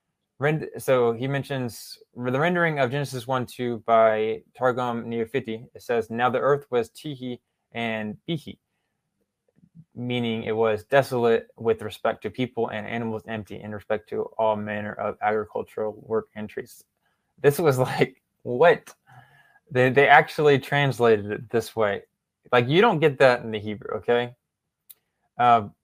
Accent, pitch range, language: American, 110-135 Hz, English